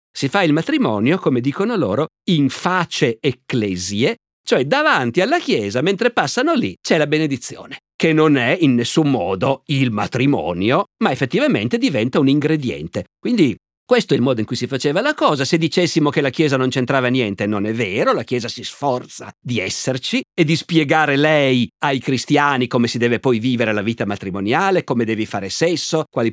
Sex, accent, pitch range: male, native, 115-155 Hz